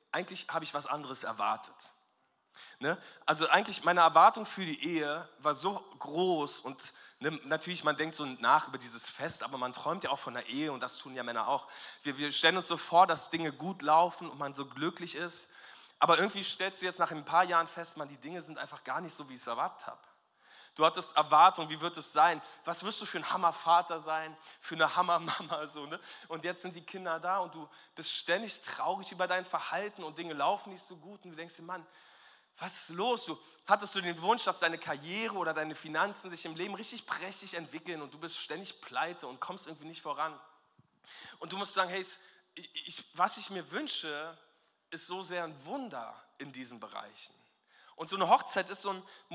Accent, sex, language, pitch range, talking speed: German, male, German, 155-185 Hz, 210 wpm